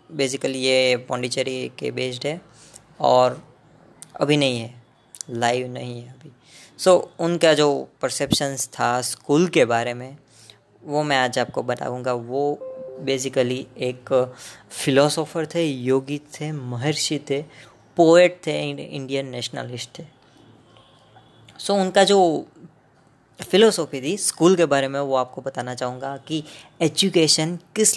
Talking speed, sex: 130 wpm, female